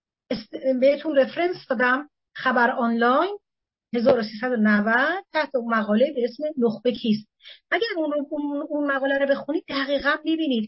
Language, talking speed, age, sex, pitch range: Persian, 120 wpm, 40-59, female, 225-285 Hz